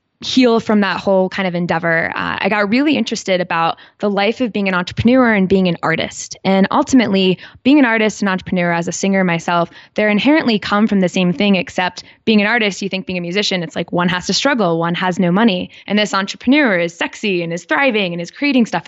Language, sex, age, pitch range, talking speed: English, female, 10-29, 175-210 Hz, 230 wpm